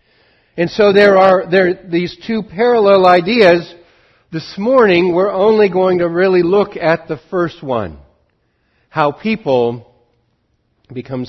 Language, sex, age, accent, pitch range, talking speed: English, male, 60-79, American, 115-185 Hz, 130 wpm